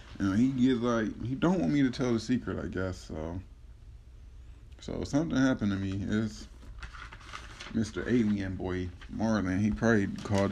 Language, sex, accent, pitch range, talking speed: English, male, American, 95-120 Hz, 165 wpm